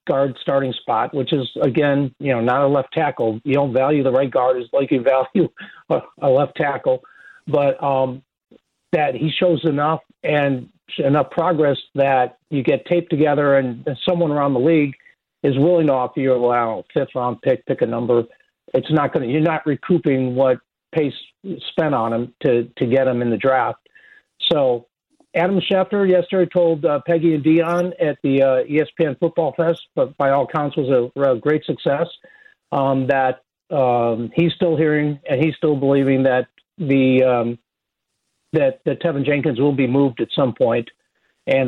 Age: 50-69